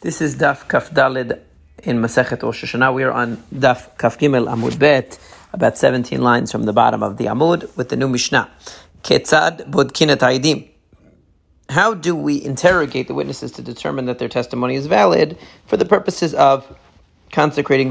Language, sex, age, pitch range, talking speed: English, male, 40-59, 130-165 Hz, 170 wpm